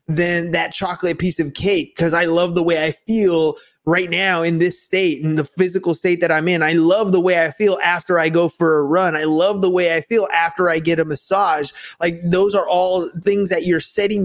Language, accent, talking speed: English, American, 235 wpm